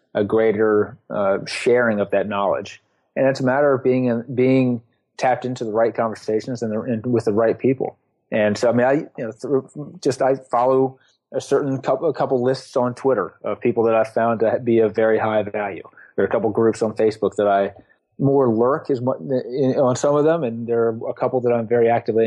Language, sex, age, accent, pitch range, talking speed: English, male, 30-49, American, 110-130 Hz, 220 wpm